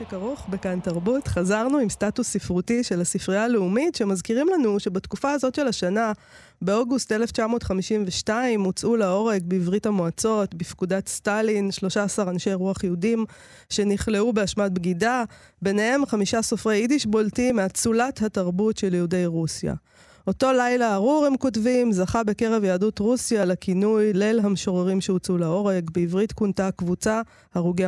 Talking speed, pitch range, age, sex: 125 wpm, 185-225 Hz, 20-39, female